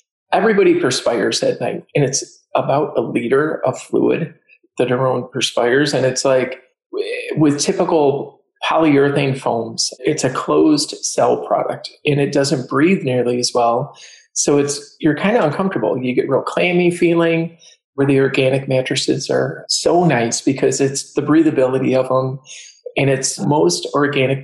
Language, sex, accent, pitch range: English, male, American, 130-160 Hz